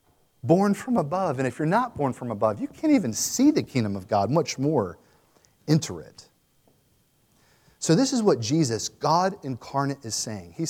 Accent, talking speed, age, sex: American, 180 wpm, 40-59, male